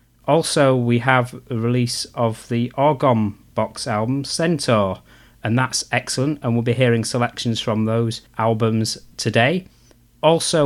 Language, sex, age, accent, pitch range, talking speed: English, male, 30-49, British, 115-135 Hz, 135 wpm